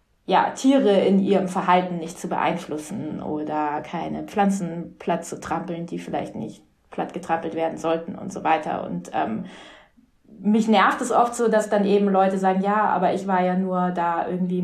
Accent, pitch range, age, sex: German, 180-205 Hz, 20-39, female